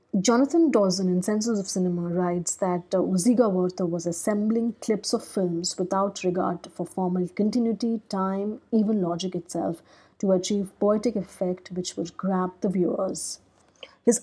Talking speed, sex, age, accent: 145 wpm, female, 30-49, Indian